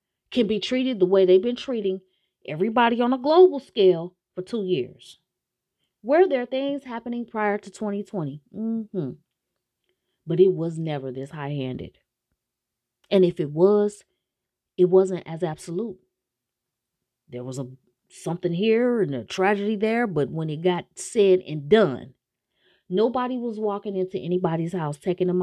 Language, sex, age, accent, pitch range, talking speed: English, female, 30-49, American, 170-210 Hz, 145 wpm